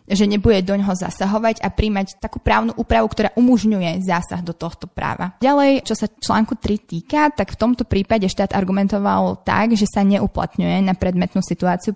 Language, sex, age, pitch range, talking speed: Slovak, female, 20-39, 185-220 Hz, 175 wpm